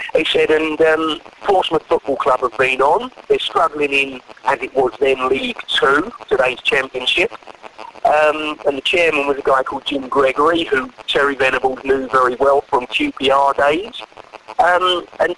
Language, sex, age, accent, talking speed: English, male, 40-59, British, 165 wpm